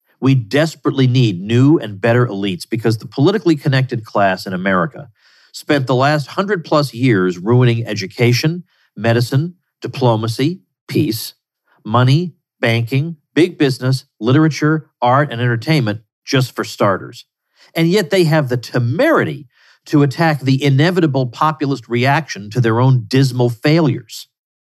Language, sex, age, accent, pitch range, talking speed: English, male, 50-69, American, 115-150 Hz, 130 wpm